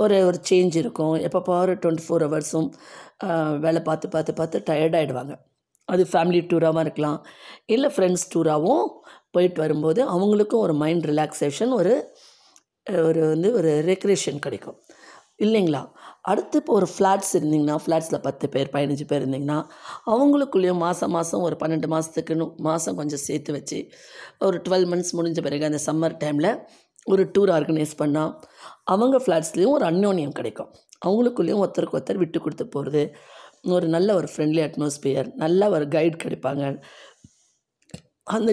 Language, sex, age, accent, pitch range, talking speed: Tamil, female, 20-39, native, 155-200 Hz, 135 wpm